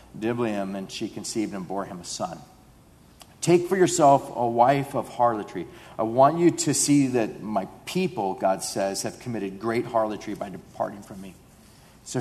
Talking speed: 170 wpm